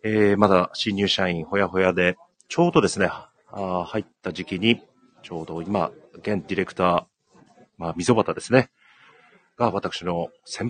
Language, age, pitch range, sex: Japanese, 40-59, 90-115 Hz, male